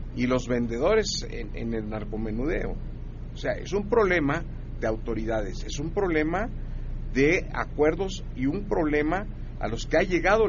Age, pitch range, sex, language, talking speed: 50-69, 105-160 Hz, male, Spanish, 155 wpm